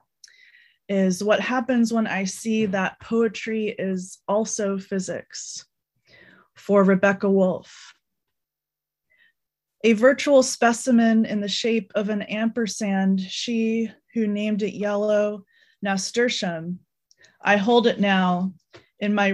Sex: female